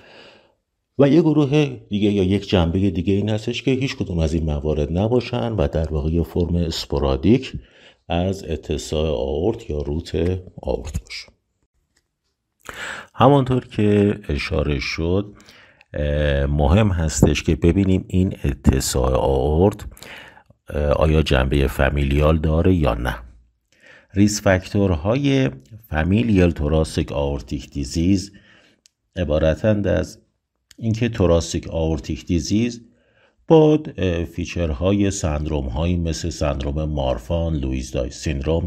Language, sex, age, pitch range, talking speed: Persian, male, 50-69, 75-100 Hz, 105 wpm